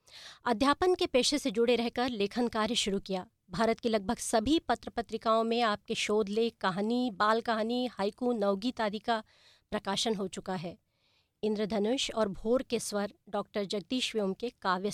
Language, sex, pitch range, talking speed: English, female, 205-240 Hz, 155 wpm